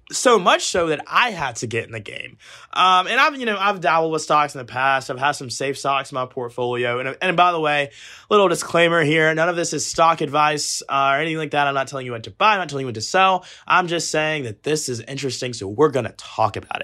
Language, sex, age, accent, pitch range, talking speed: English, male, 20-39, American, 125-165 Hz, 270 wpm